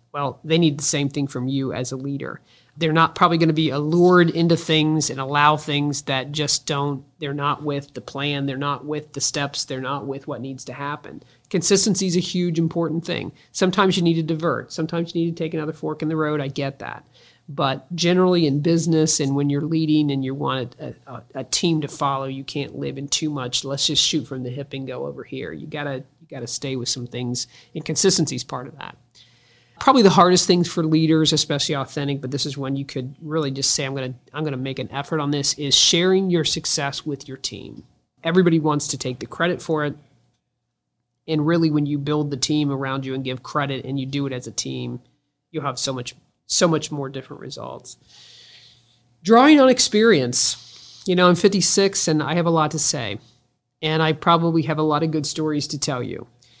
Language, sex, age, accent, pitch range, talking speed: English, male, 40-59, American, 135-160 Hz, 220 wpm